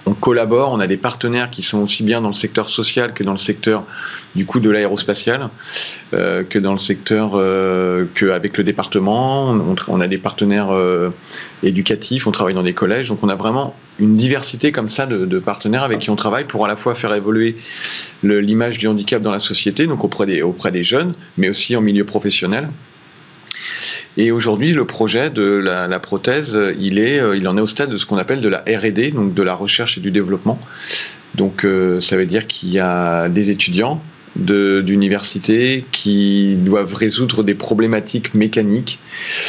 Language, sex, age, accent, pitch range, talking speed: French, male, 40-59, French, 100-115 Hz, 195 wpm